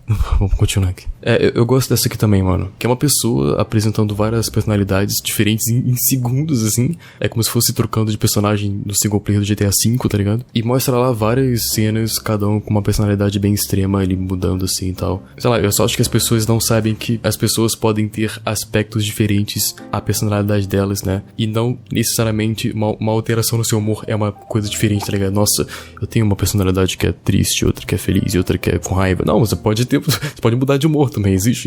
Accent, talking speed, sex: Brazilian, 225 wpm, male